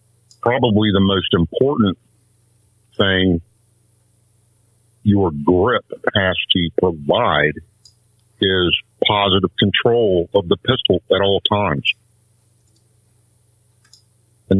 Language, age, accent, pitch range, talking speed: English, 50-69, American, 95-115 Hz, 80 wpm